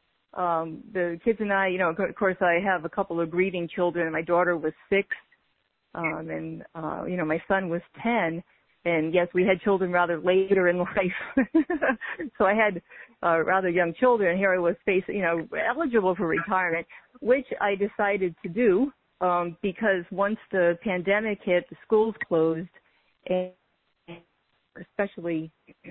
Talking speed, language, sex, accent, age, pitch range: 160 wpm, English, female, American, 40-59, 170-210 Hz